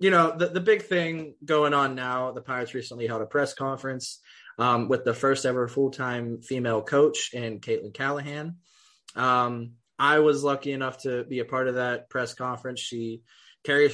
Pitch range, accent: 115-145 Hz, American